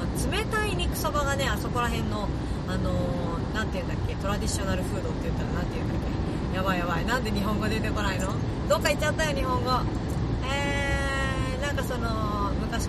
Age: 30-49